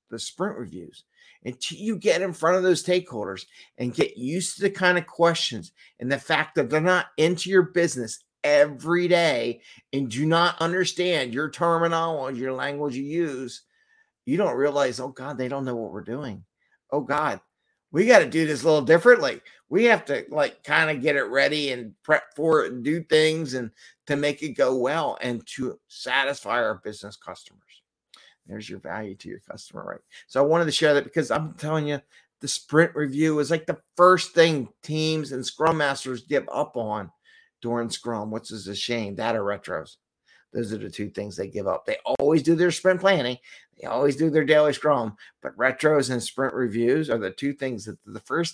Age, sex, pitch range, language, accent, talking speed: 50-69, male, 120-165 Hz, English, American, 200 wpm